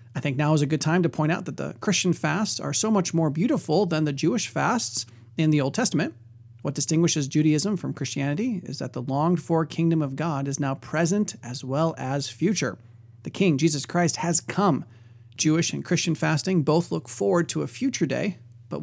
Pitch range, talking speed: 130-165 Hz, 205 wpm